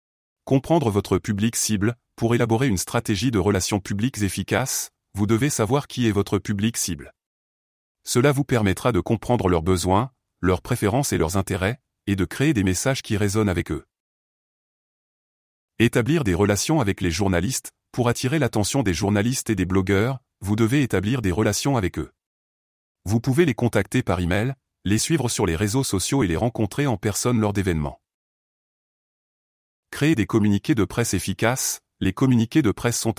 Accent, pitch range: French, 95-125 Hz